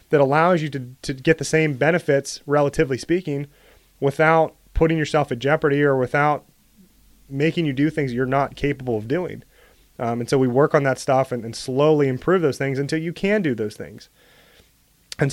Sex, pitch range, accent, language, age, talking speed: male, 125-150 Hz, American, English, 30-49, 190 wpm